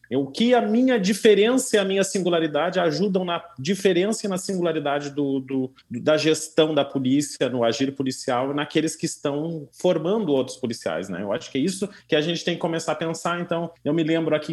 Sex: male